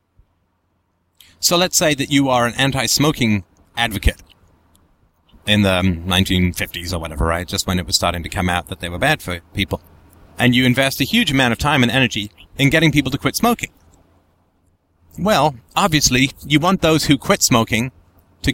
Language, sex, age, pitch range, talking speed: English, male, 30-49, 90-145 Hz, 175 wpm